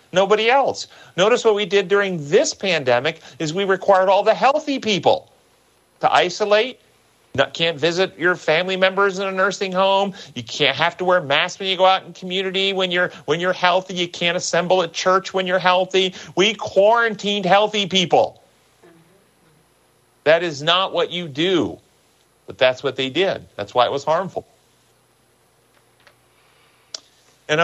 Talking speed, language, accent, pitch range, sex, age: 160 wpm, English, American, 140-195 Hz, male, 40-59